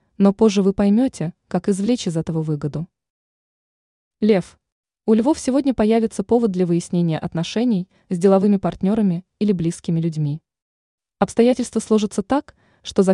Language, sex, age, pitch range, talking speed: Russian, female, 20-39, 170-225 Hz, 130 wpm